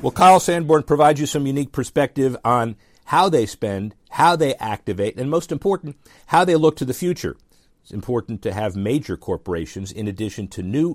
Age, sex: 50-69, male